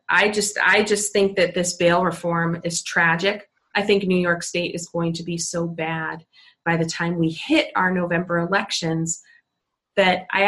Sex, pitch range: female, 165-200 Hz